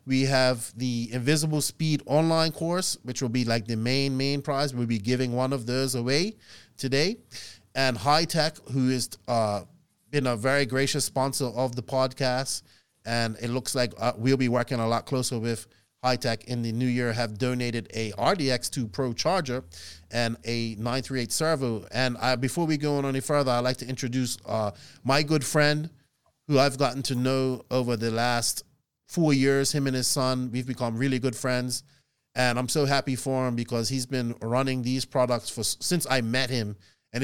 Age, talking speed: 30-49, 185 wpm